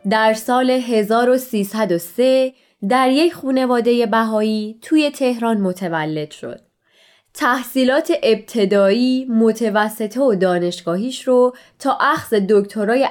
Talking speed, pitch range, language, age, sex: 90 wpm, 195-255 Hz, Persian, 20-39, female